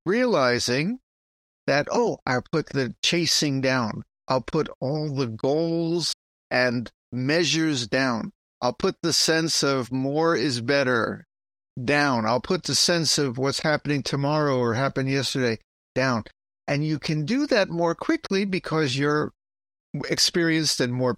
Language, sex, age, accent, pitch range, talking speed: English, male, 60-79, American, 135-200 Hz, 140 wpm